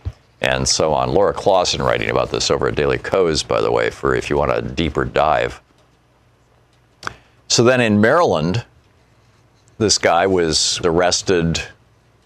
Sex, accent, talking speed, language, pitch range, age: male, American, 145 wpm, English, 90-125 Hz, 50-69